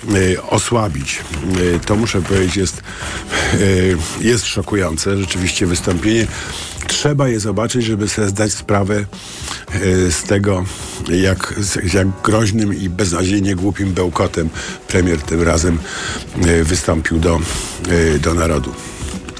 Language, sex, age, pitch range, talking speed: Polish, male, 50-69, 85-100 Hz, 100 wpm